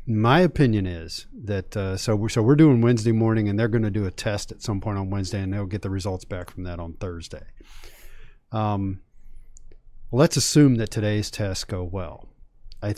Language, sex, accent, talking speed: English, male, American, 190 wpm